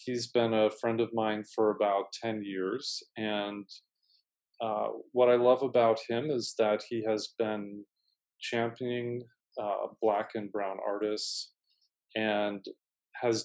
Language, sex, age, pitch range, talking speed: English, male, 40-59, 105-115 Hz, 135 wpm